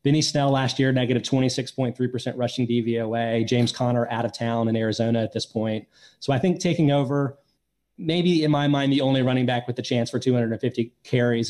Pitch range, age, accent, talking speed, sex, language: 120-150 Hz, 30-49, American, 195 wpm, male, English